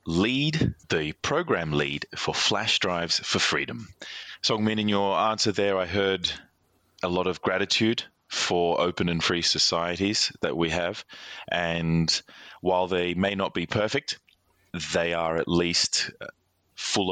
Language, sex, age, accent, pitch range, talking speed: English, male, 30-49, Australian, 80-95 Hz, 140 wpm